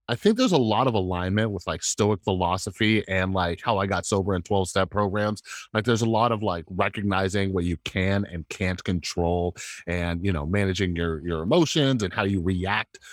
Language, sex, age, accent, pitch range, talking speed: English, male, 30-49, American, 95-125 Hz, 205 wpm